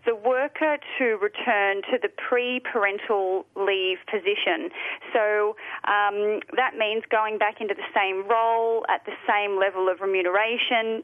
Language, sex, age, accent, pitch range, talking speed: English, female, 30-49, Australian, 200-260 Hz, 135 wpm